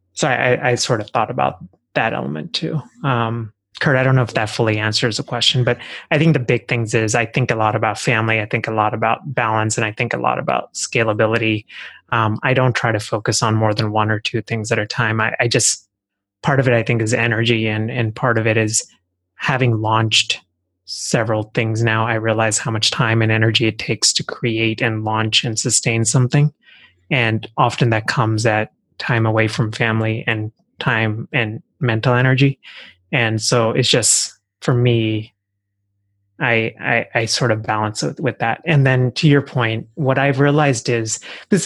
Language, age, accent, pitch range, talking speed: English, 20-39, American, 110-125 Hz, 200 wpm